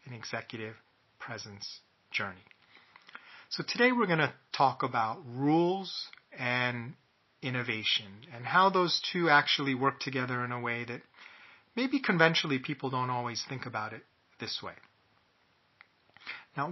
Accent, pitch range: American, 120-145 Hz